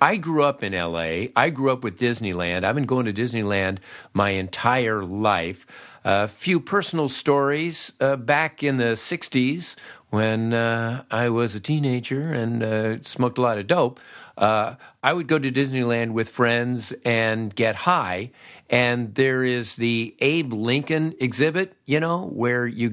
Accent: American